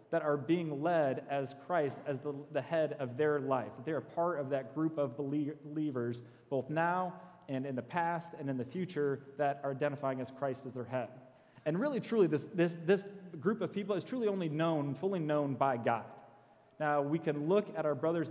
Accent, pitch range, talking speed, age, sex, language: American, 135-170 Hz, 205 wpm, 30-49, male, English